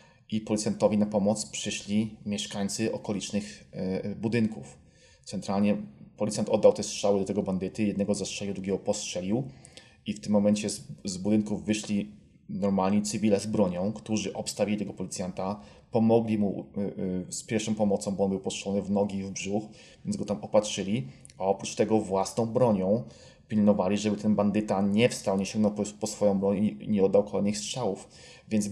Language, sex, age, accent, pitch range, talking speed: Polish, male, 20-39, native, 100-115 Hz, 160 wpm